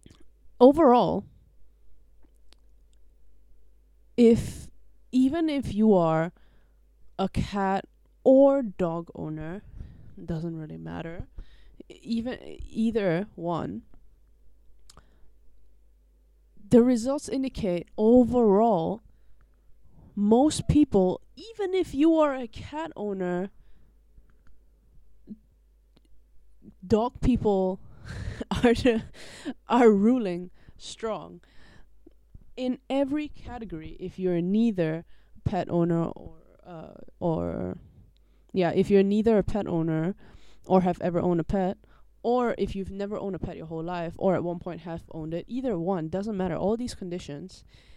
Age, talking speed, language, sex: 20-39, 105 wpm, English, female